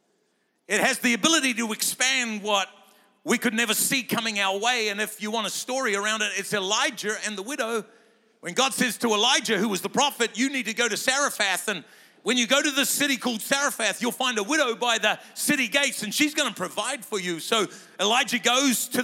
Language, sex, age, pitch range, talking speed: English, male, 50-69, 220-280 Hz, 220 wpm